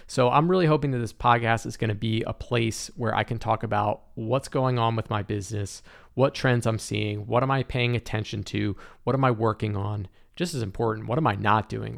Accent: American